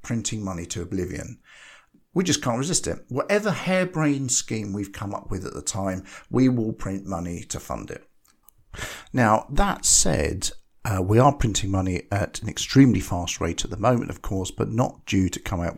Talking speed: 190 wpm